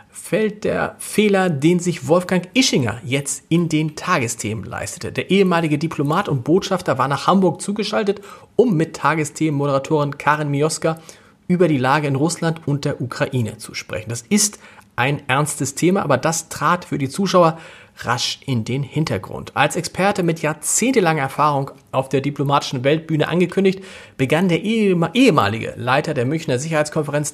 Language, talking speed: German, 150 wpm